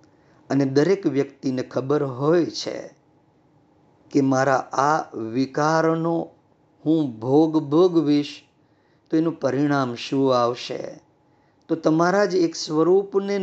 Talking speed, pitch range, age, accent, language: 105 wpm, 145-185 Hz, 50-69, native, Gujarati